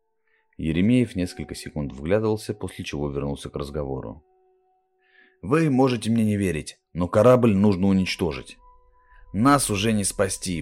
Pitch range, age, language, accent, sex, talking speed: 85-125 Hz, 30-49, Russian, native, male, 125 wpm